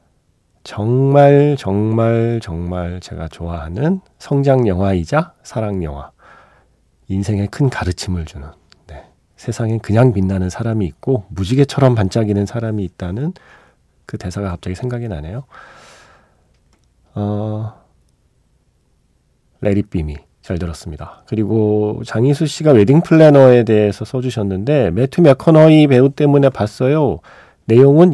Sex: male